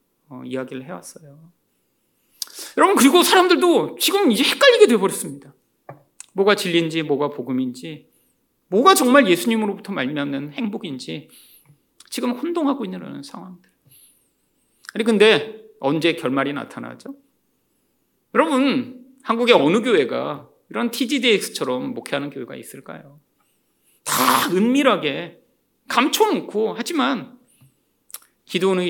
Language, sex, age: Korean, male, 40-59